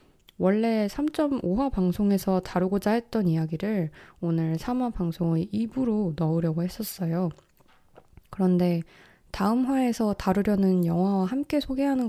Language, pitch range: Korean, 170-215 Hz